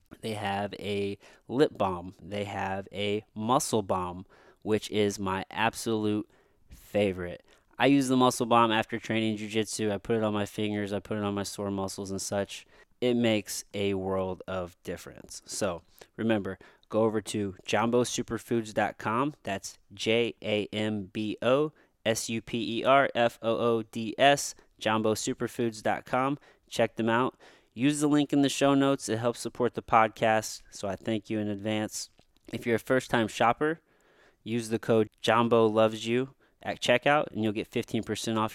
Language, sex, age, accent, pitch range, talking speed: English, male, 20-39, American, 100-120 Hz, 145 wpm